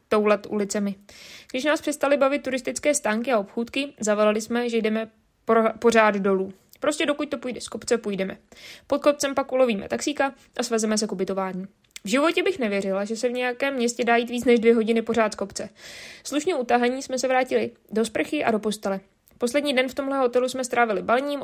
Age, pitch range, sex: 20-39, 215-255 Hz, female